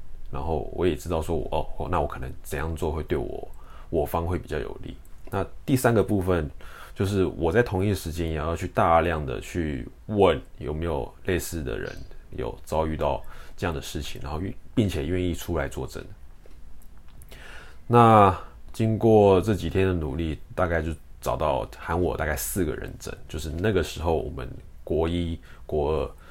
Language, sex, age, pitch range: Chinese, male, 20-39, 75-90 Hz